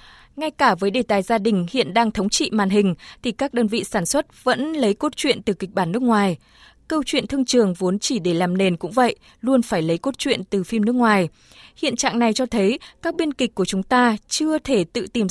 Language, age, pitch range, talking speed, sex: Vietnamese, 20-39, 205-270 Hz, 245 wpm, female